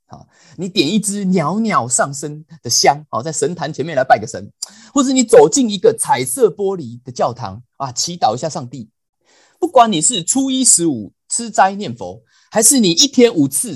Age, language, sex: 30-49, Chinese, male